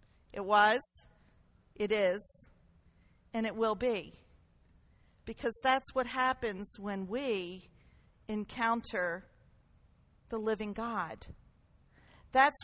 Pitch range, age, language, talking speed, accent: 200-260 Hz, 50-69, English, 90 wpm, American